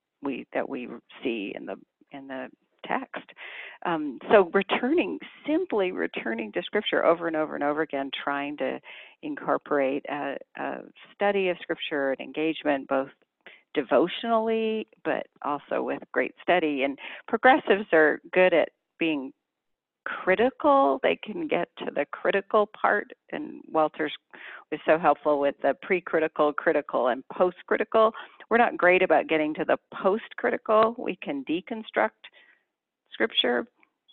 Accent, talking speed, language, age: American, 135 wpm, English, 40-59